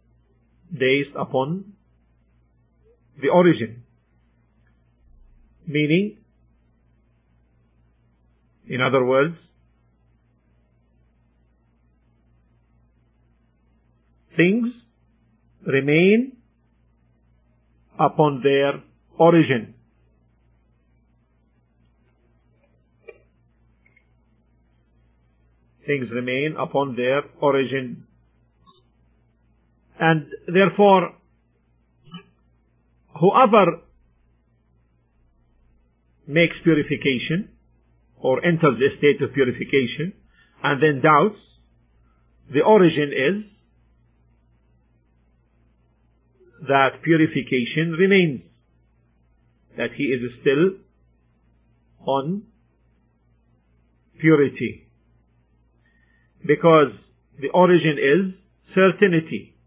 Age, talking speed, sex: 50-69, 50 wpm, male